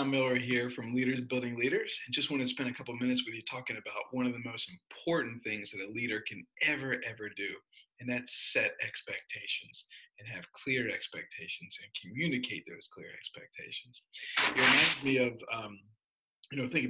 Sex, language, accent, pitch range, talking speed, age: male, English, American, 120-140 Hz, 180 wpm, 40-59